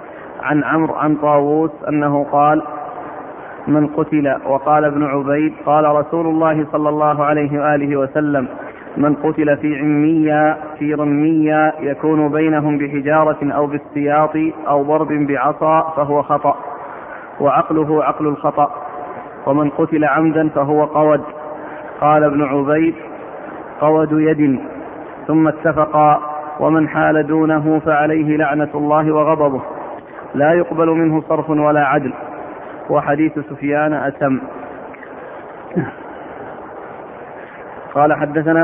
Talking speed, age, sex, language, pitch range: 105 wpm, 30-49, male, Arabic, 150-160 Hz